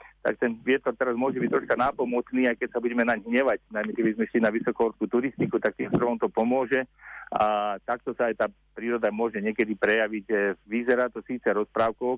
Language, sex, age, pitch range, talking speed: Slovak, male, 40-59, 105-120 Hz, 190 wpm